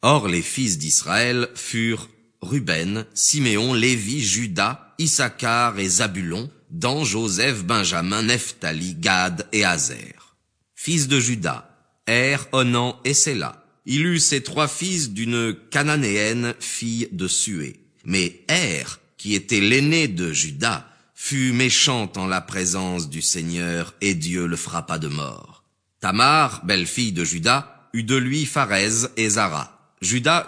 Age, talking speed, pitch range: 40-59, 135 wpm, 95-140 Hz